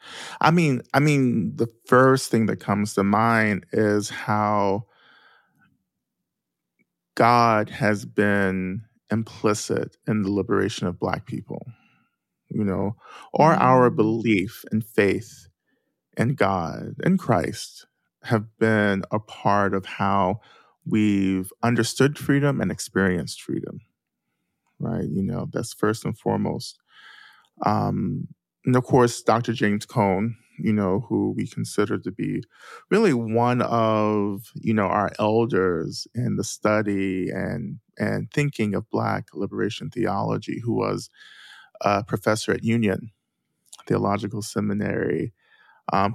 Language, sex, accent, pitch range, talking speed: English, male, American, 100-125 Hz, 120 wpm